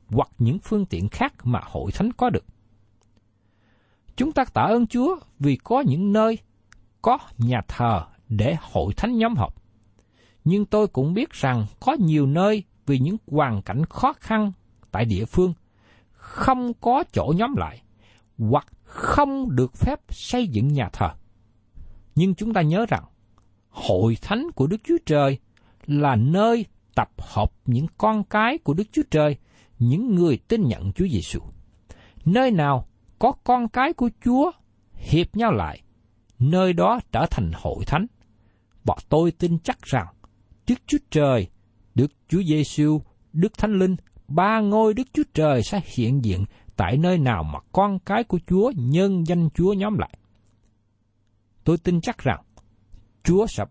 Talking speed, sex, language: 160 wpm, male, Vietnamese